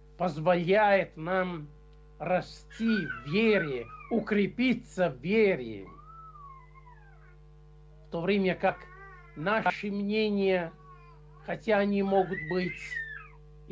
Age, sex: 50-69, male